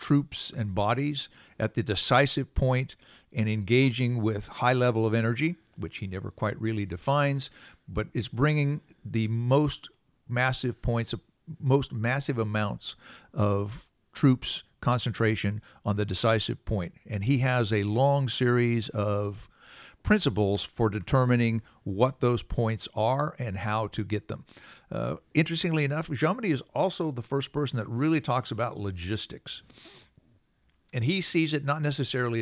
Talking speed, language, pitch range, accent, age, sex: 140 wpm, English, 105-135 Hz, American, 50-69, male